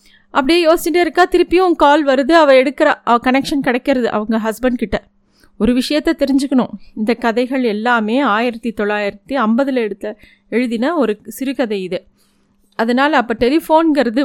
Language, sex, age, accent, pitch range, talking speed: Tamil, female, 30-49, native, 225-285 Hz, 125 wpm